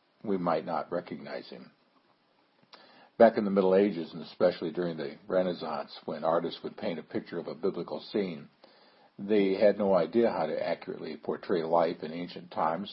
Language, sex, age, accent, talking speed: English, male, 60-79, American, 170 wpm